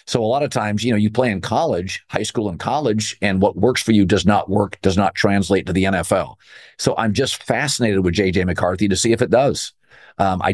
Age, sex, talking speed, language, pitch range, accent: 50-69, male, 245 wpm, English, 100-125 Hz, American